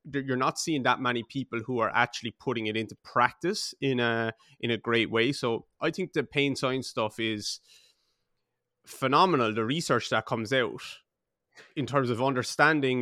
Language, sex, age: English, male, 30-49